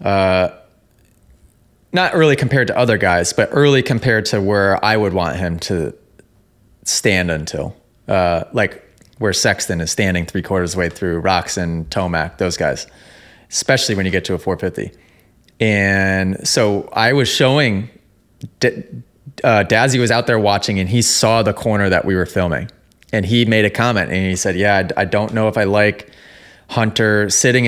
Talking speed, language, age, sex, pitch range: 170 wpm, English, 20-39, male, 95-120 Hz